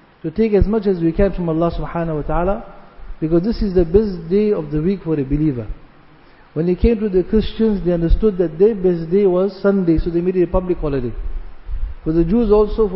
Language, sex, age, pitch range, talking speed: English, male, 50-69, 165-200 Hz, 225 wpm